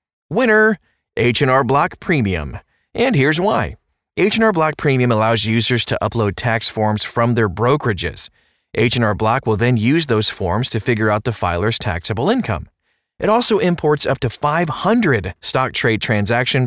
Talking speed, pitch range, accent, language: 150 wpm, 110-140 Hz, American, English